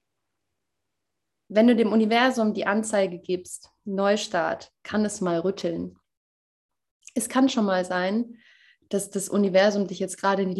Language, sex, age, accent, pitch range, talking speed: German, female, 20-39, German, 180-210 Hz, 140 wpm